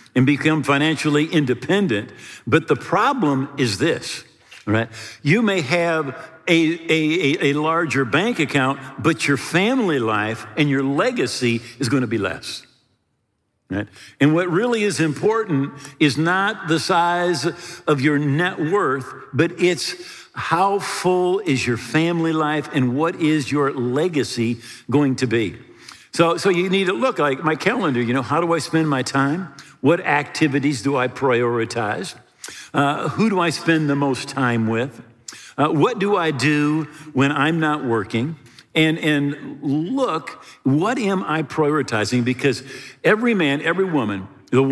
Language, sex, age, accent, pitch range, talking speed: English, male, 50-69, American, 125-165 Hz, 155 wpm